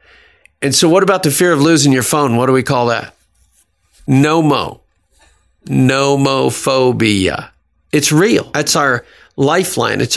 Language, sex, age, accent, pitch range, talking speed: English, male, 50-69, American, 115-145 Hz, 135 wpm